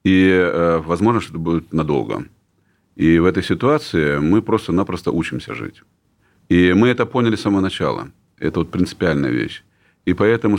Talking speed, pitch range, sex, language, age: 145 wpm, 85-110 Hz, male, Russian, 40-59